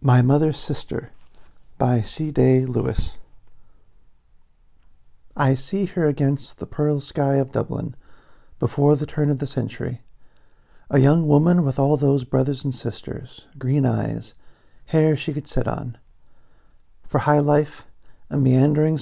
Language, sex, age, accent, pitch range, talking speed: English, male, 50-69, American, 125-150 Hz, 135 wpm